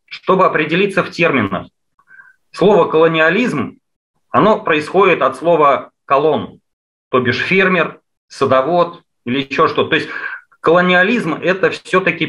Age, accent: 30-49, native